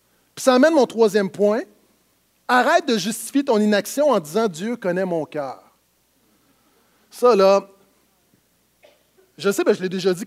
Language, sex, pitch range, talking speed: French, male, 230-295 Hz, 145 wpm